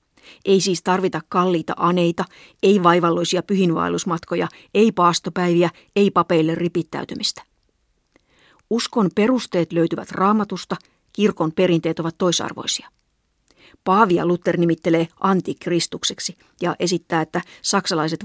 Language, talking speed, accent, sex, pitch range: Finnish, 95 wpm, native, female, 165-190 Hz